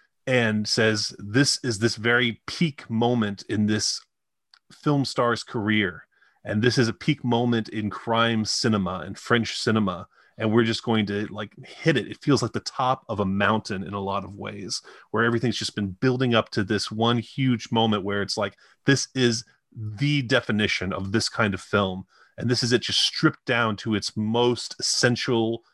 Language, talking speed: English, 185 wpm